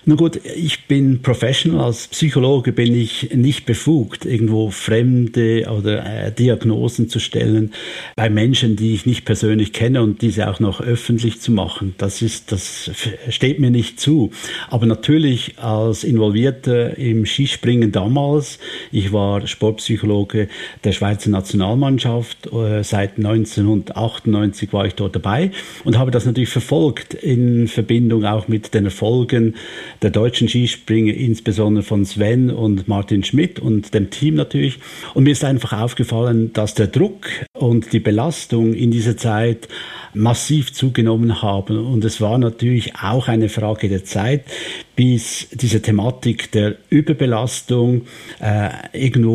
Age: 50-69